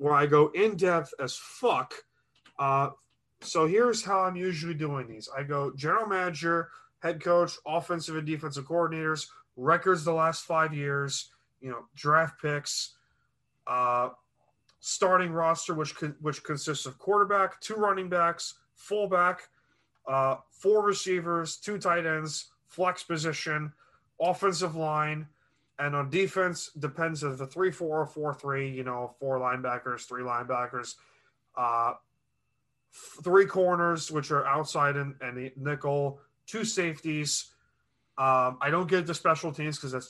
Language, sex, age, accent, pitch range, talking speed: English, male, 30-49, American, 140-175 Hz, 140 wpm